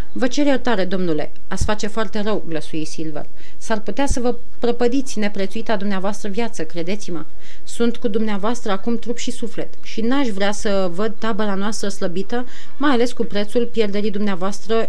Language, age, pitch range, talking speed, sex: Romanian, 30-49, 185-235 Hz, 160 wpm, female